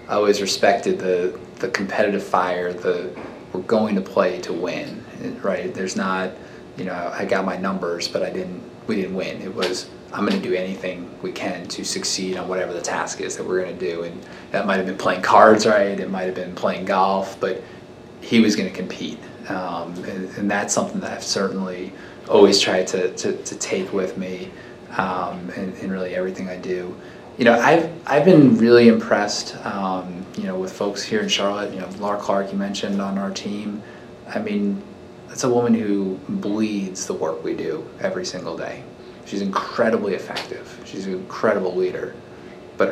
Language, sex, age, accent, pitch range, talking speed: English, male, 20-39, American, 90-105 Hz, 195 wpm